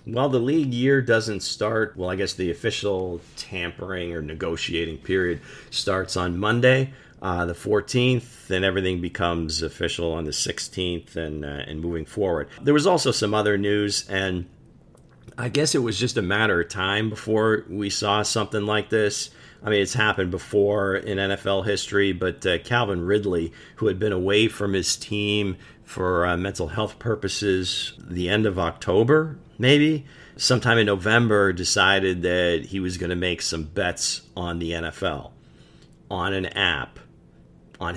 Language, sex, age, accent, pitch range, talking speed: English, male, 40-59, American, 90-110 Hz, 165 wpm